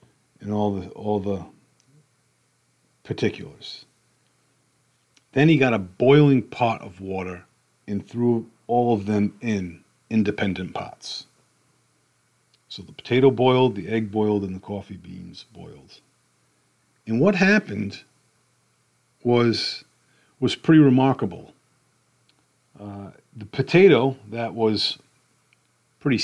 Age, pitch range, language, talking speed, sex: 50-69, 105-135 Hz, English, 105 wpm, male